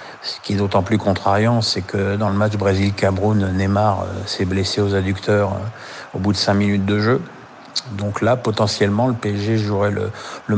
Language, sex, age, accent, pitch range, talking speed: French, male, 50-69, French, 100-115 Hz, 200 wpm